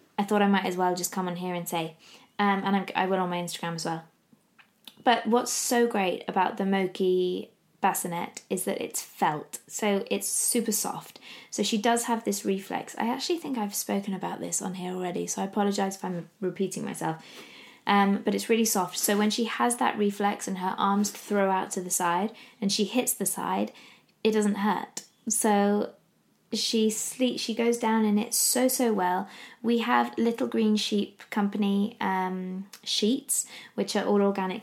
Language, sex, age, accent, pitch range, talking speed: English, female, 20-39, British, 180-220 Hz, 190 wpm